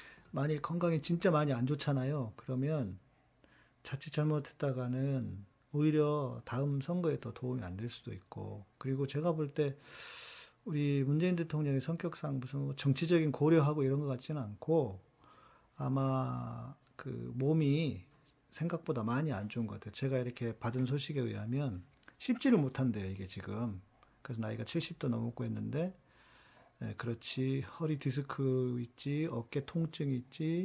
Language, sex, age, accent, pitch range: Korean, male, 40-59, native, 120-150 Hz